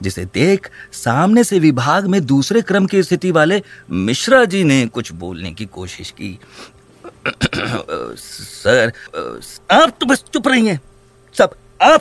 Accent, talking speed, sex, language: native, 135 wpm, male, Hindi